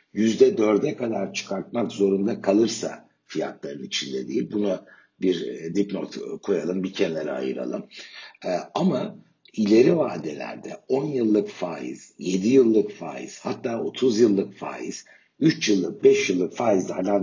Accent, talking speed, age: native, 115 wpm, 60-79